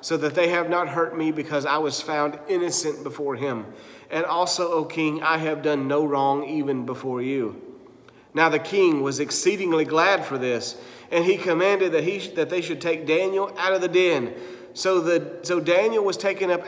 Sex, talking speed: male, 200 wpm